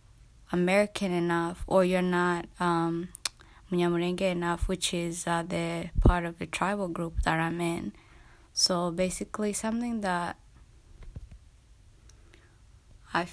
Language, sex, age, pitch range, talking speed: English, female, 20-39, 170-185 Hz, 110 wpm